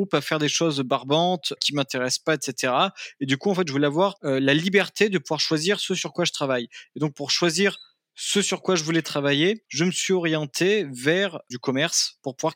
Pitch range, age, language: 135-170 Hz, 20-39, French